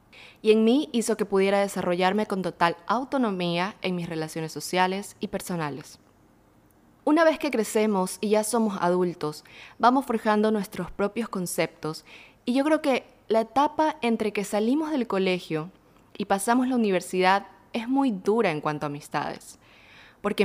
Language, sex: Spanish, female